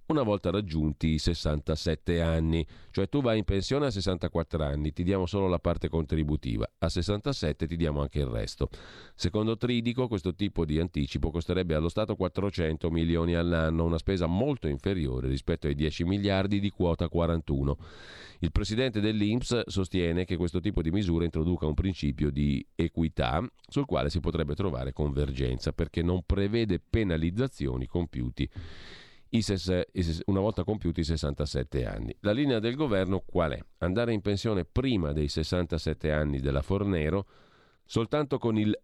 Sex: male